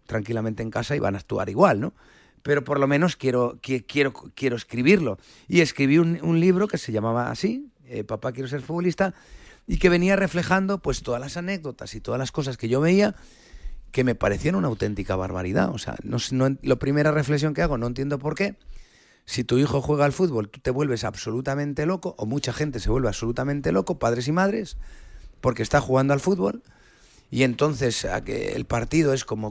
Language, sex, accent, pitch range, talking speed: Spanish, male, Spanish, 120-155 Hz, 195 wpm